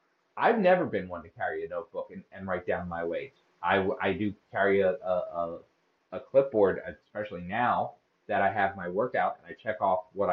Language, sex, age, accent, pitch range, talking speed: English, male, 30-49, American, 100-145 Hz, 200 wpm